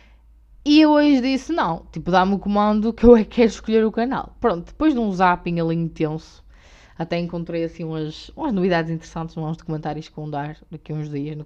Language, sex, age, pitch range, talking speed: Portuguese, female, 20-39, 155-205 Hz, 220 wpm